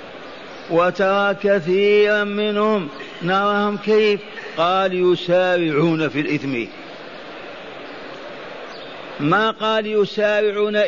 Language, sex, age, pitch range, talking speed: Arabic, male, 50-69, 190-215 Hz, 65 wpm